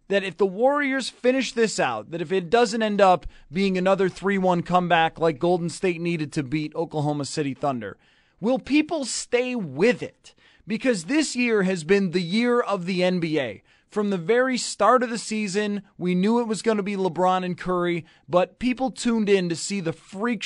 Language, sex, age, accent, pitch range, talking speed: English, male, 30-49, American, 170-225 Hz, 195 wpm